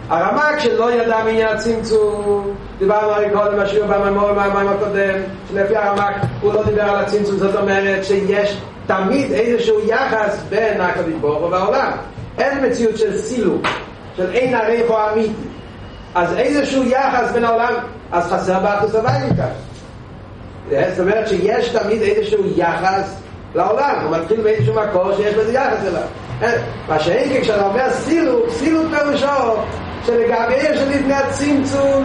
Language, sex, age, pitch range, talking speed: Hebrew, male, 40-59, 200-270 Hz, 135 wpm